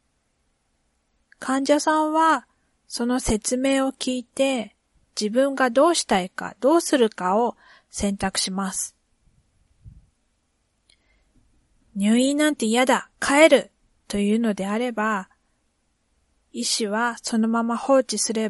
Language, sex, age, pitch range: Japanese, female, 40-59, 205-265 Hz